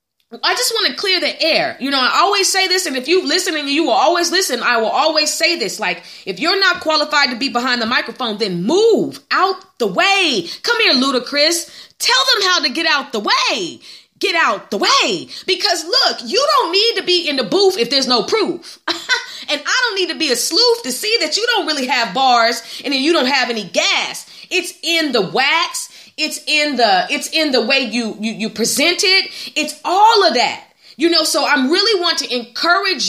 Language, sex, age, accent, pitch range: Japanese, female, 30-49, American, 245-365 Hz